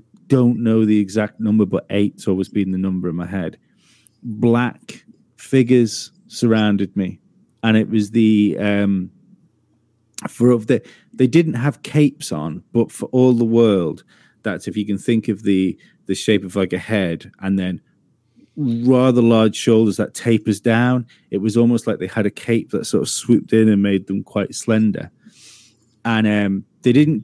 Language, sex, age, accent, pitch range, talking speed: English, male, 30-49, British, 100-120 Hz, 175 wpm